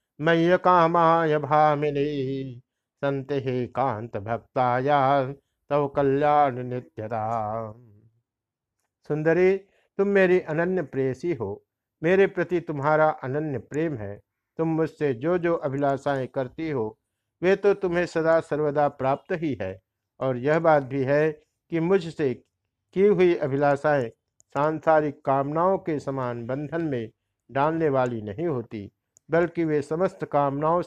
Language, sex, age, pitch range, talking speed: Hindi, male, 60-79, 120-165 Hz, 120 wpm